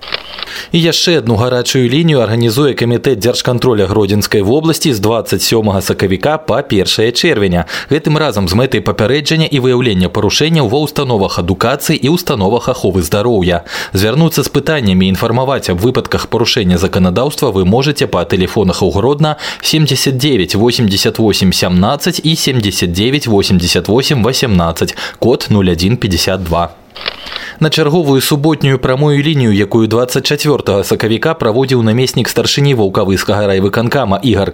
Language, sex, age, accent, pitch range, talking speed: Russian, male, 20-39, native, 95-140 Hz, 110 wpm